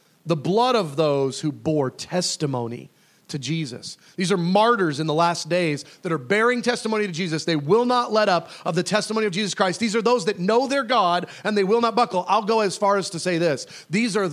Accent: American